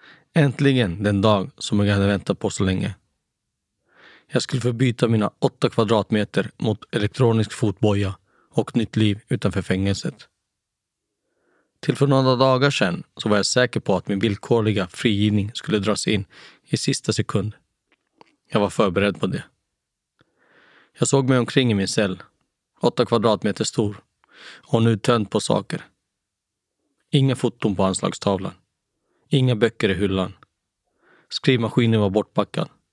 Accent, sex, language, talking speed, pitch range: native, male, Swedish, 135 wpm, 100-120 Hz